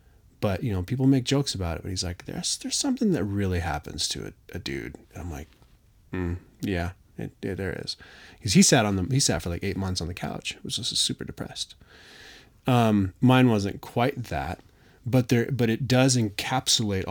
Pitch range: 95-130 Hz